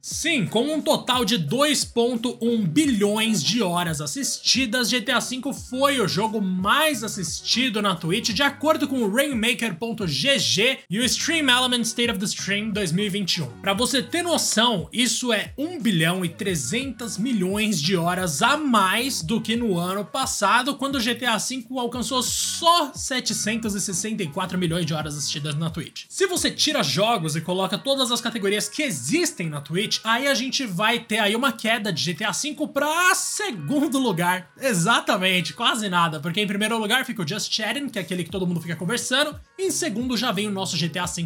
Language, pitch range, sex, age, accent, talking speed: Portuguese, 185-255 Hz, male, 20-39, Brazilian, 175 wpm